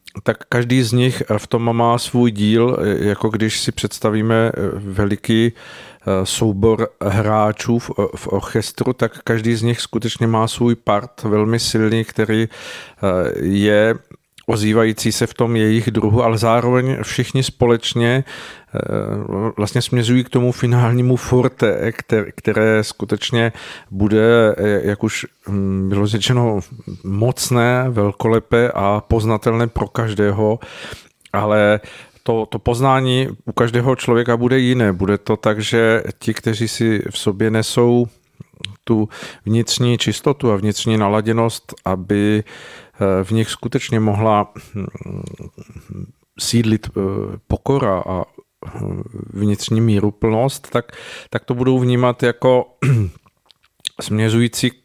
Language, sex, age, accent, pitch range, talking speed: Czech, male, 50-69, native, 105-120 Hz, 115 wpm